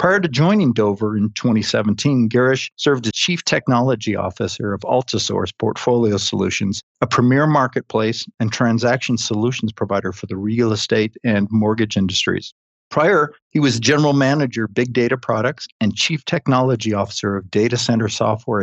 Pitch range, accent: 110-135 Hz, American